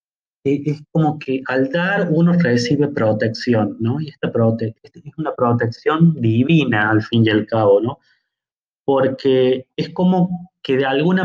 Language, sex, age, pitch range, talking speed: Spanish, male, 30-49, 120-165 Hz, 150 wpm